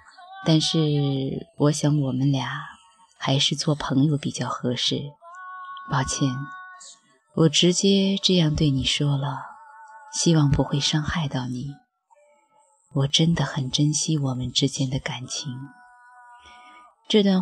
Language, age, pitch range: Chinese, 20-39, 135-190 Hz